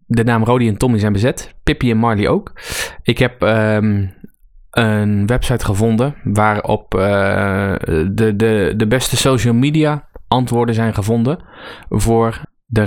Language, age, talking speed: Dutch, 20-39, 140 wpm